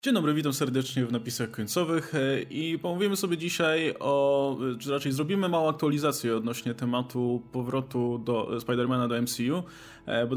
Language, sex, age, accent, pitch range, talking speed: Polish, male, 20-39, native, 125-150 Hz, 145 wpm